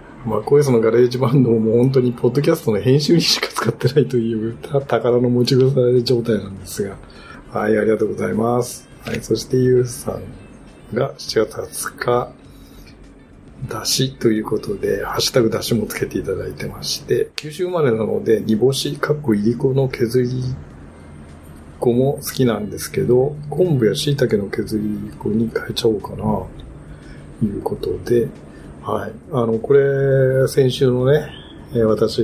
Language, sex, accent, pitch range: Japanese, male, native, 105-130 Hz